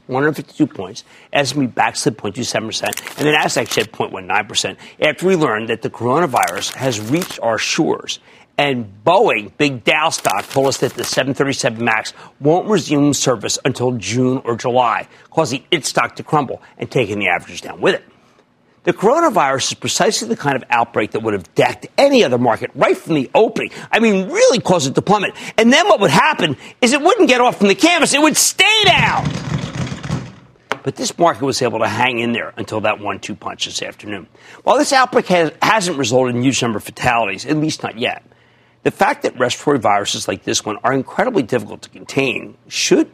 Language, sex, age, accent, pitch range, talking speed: English, male, 50-69, American, 120-180 Hz, 190 wpm